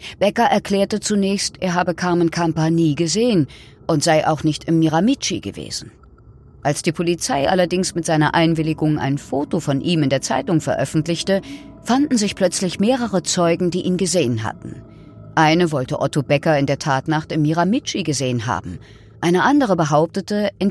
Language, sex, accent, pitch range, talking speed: German, female, German, 135-185 Hz, 160 wpm